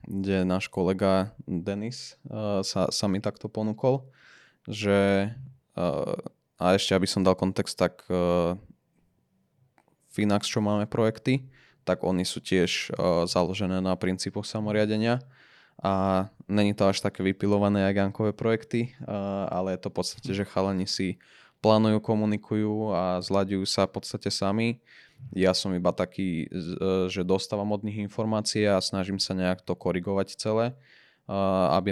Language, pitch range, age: Slovak, 95-110 Hz, 20-39